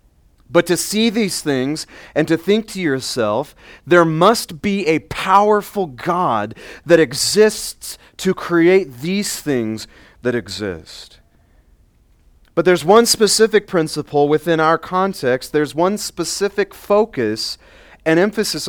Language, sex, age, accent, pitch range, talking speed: English, male, 30-49, American, 115-170 Hz, 120 wpm